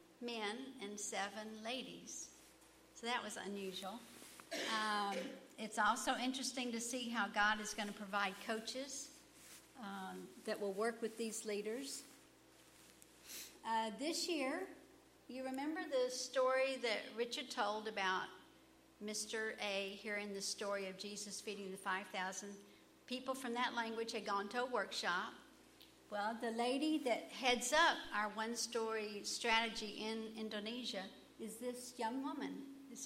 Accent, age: American, 60-79